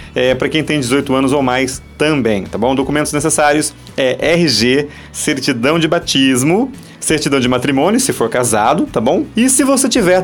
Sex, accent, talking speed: male, Brazilian, 170 wpm